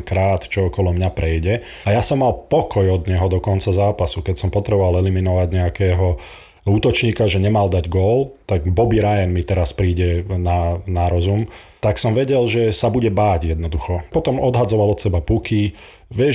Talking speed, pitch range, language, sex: 175 wpm, 90-110 Hz, Slovak, male